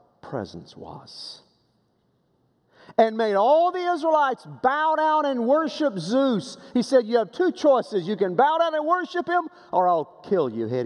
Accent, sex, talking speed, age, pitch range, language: American, male, 170 wpm, 50-69, 125-200 Hz, English